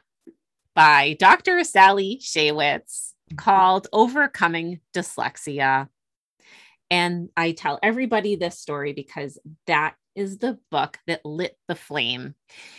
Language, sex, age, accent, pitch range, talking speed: English, female, 30-49, American, 155-220 Hz, 105 wpm